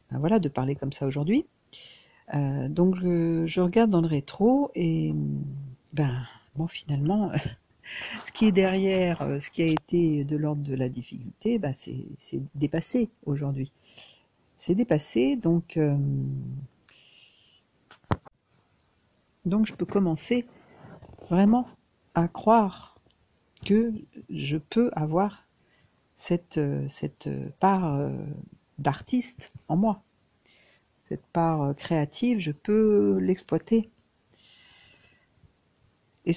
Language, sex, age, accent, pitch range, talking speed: French, female, 60-79, French, 130-185 Hz, 105 wpm